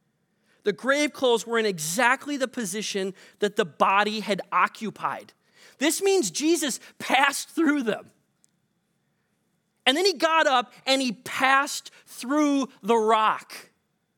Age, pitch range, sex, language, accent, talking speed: 30-49, 205-280 Hz, male, English, American, 125 wpm